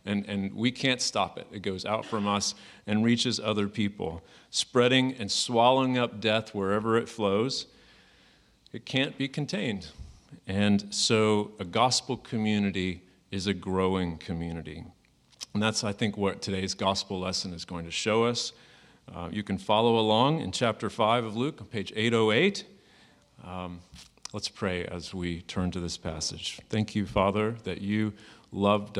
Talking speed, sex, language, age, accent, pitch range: 155 wpm, male, English, 40-59, American, 90-110 Hz